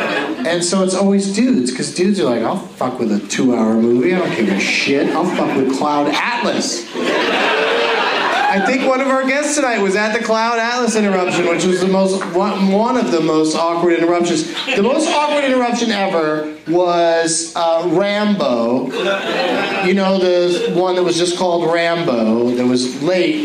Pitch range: 130-190 Hz